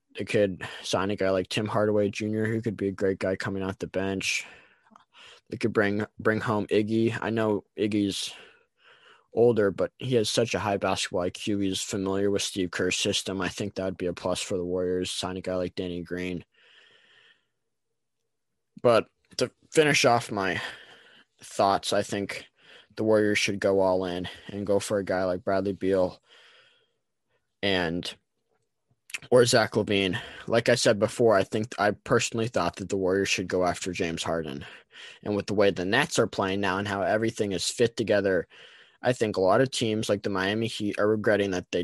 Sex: male